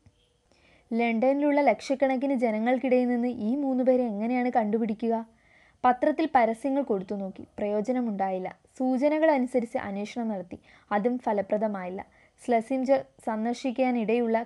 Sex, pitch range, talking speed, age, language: female, 210-255 Hz, 85 wpm, 20-39, Malayalam